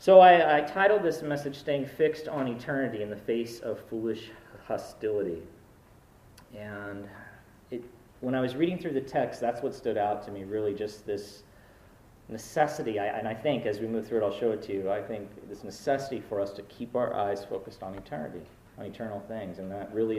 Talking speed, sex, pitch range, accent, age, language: 195 wpm, male, 100-145 Hz, American, 40-59, English